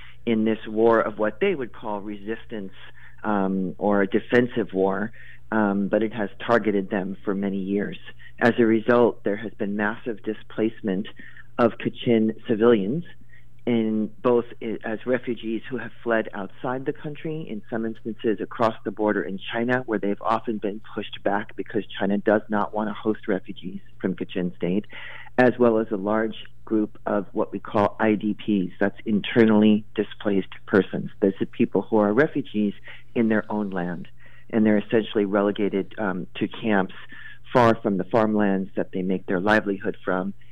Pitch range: 100-115 Hz